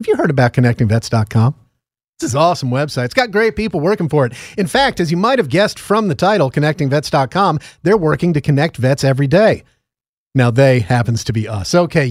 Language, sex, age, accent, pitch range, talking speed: English, male, 40-59, American, 130-180 Hz, 210 wpm